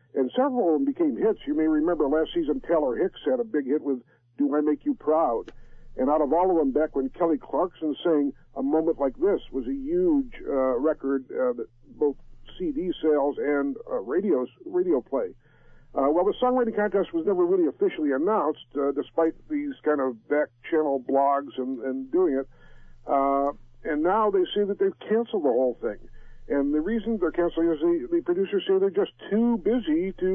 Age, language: 50-69, English